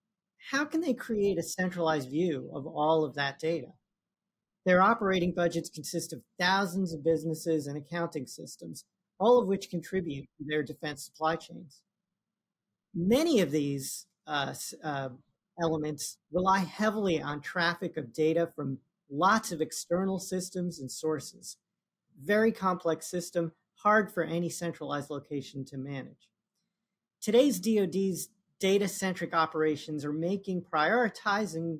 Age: 40-59